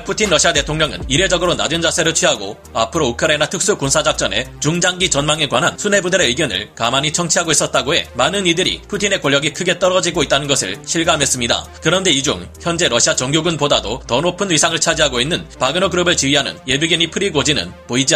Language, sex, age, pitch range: Korean, male, 30-49, 145-180 Hz